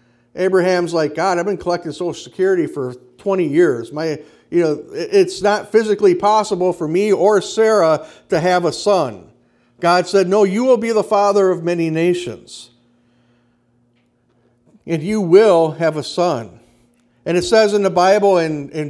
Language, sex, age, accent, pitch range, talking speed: English, male, 50-69, American, 160-210 Hz, 160 wpm